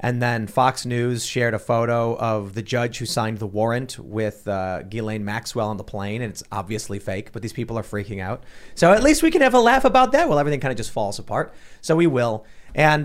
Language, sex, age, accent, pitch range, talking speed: English, male, 30-49, American, 115-145 Hz, 240 wpm